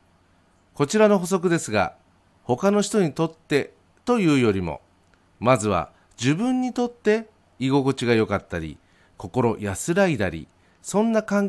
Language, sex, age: Japanese, male, 40-59